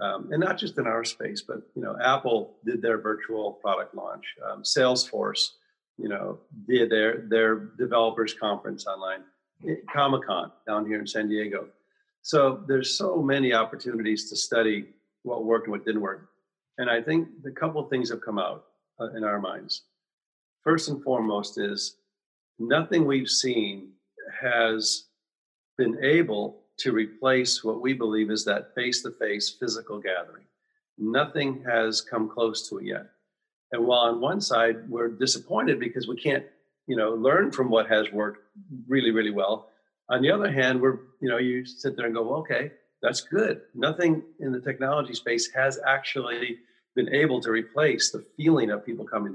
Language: English